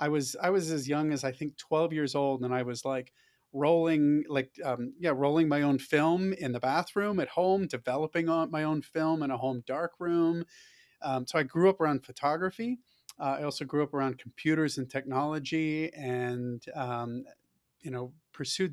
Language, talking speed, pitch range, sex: English, 190 wpm, 130-160 Hz, male